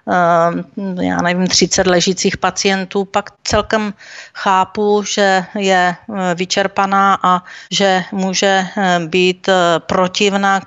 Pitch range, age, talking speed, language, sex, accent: 185-210 Hz, 40-59, 95 wpm, Czech, female, native